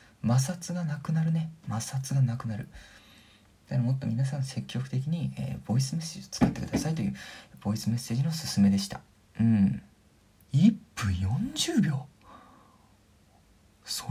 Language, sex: Japanese, male